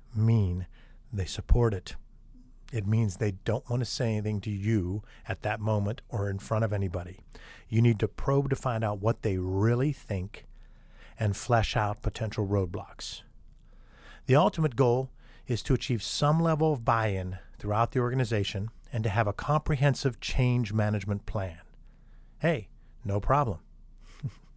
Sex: male